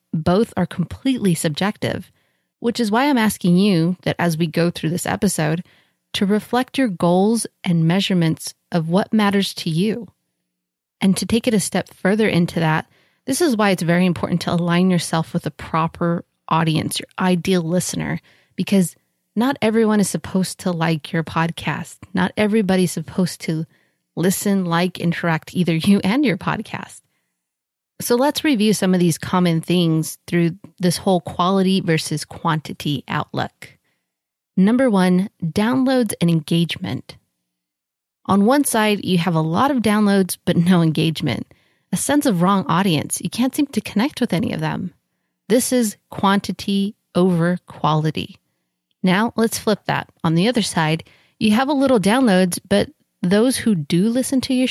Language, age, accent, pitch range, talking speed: English, 30-49, American, 165-215 Hz, 160 wpm